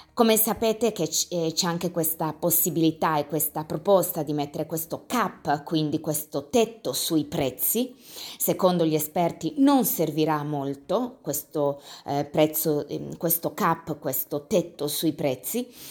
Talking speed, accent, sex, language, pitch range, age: 125 wpm, native, female, Italian, 155-185 Hz, 30-49